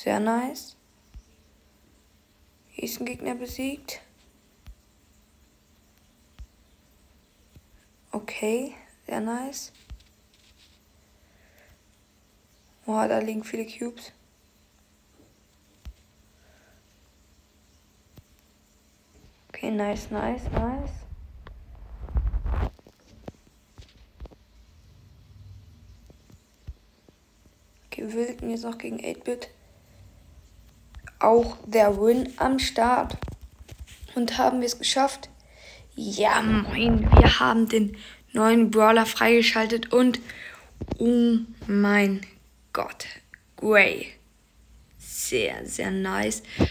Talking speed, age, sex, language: 65 wpm, 20-39, female, German